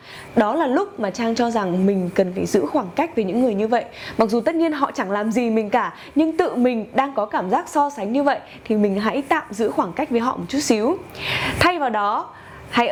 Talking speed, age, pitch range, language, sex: 255 wpm, 20-39, 215-290 Hz, Vietnamese, female